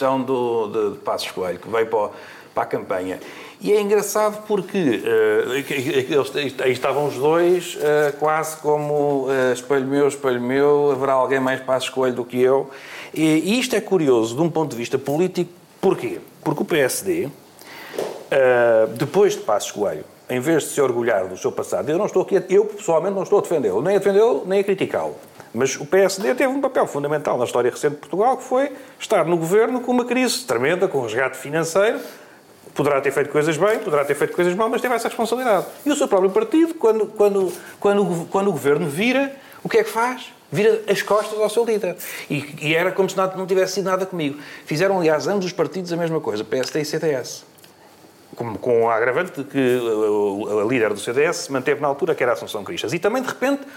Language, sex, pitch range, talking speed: Portuguese, male, 150-240 Hz, 205 wpm